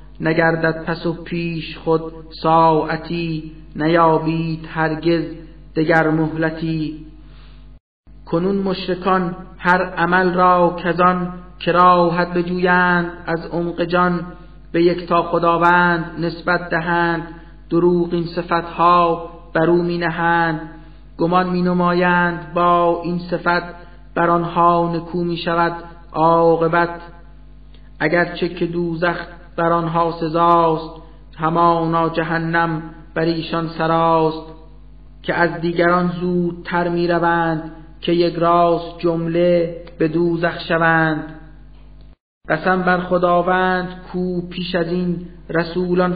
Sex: male